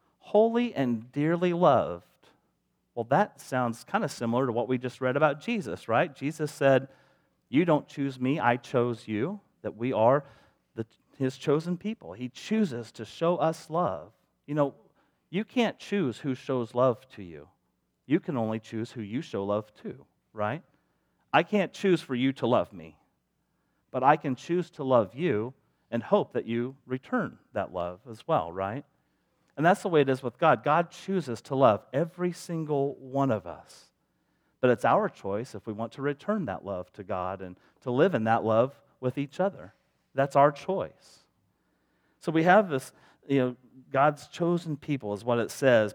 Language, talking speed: English, 180 wpm